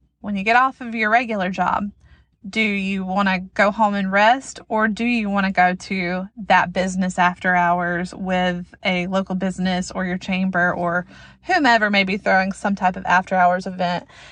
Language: English